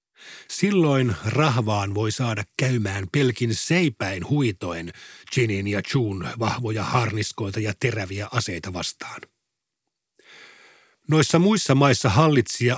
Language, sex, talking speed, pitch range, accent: Finnish, male, 100 wpm, 110-140 Hz, native